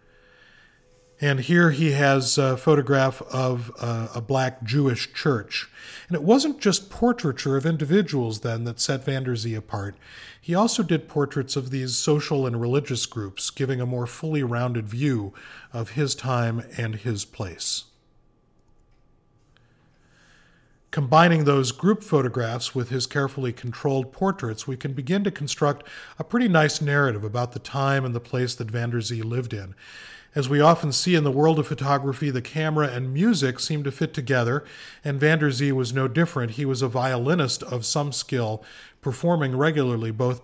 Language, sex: English, male